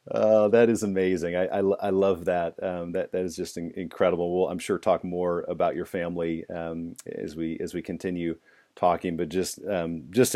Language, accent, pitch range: English, American, 85-100 Hz